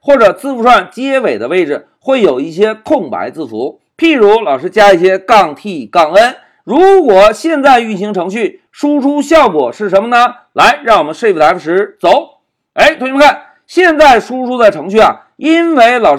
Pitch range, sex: 215-305 Hz, male